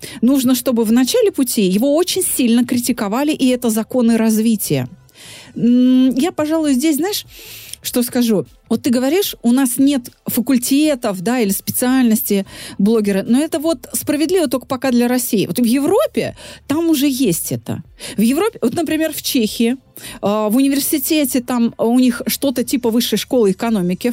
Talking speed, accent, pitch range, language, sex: 150 wpm, native, 215-290 Hz, Russian, female